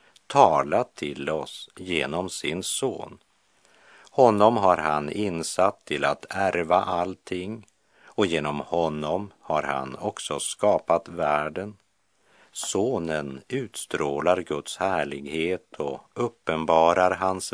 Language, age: Czech, 50-69